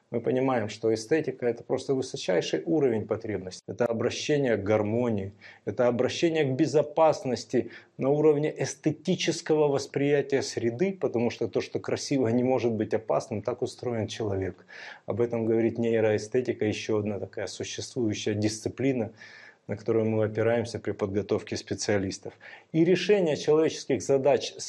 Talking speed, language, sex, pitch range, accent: 130 wpm, Russian, male, 110-150 Hz, native